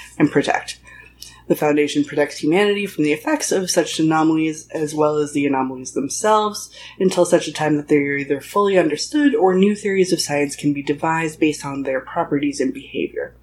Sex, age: female, 20-39